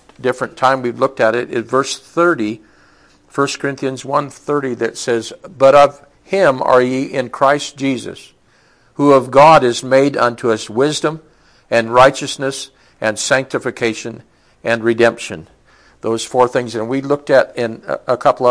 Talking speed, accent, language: 155 wpm, American, English